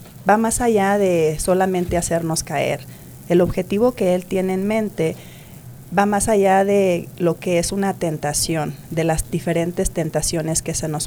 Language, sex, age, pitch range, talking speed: English, female, 30-49, 160-190 Hz, 165 wpm